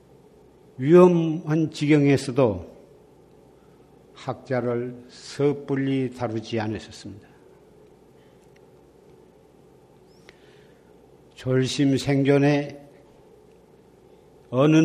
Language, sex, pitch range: Korean, male, 125-145 Hz